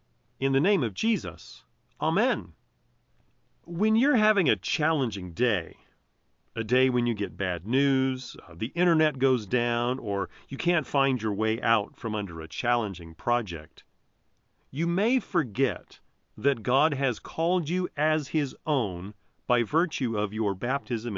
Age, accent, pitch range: 40-59, American, 100-140 Hz